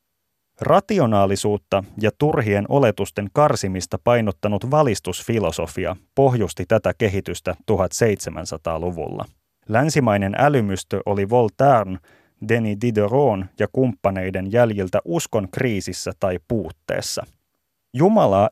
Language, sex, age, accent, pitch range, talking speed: Finnish, male, 30-49, native, 100-135 Hz, 80 wpm